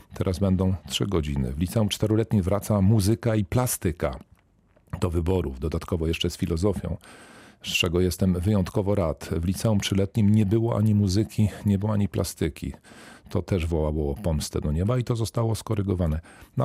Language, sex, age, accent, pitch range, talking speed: Polish, male, 40-59, native, 85-100 Hz, 160 wpm